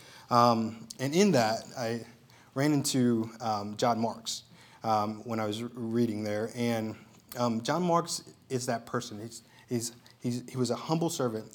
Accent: American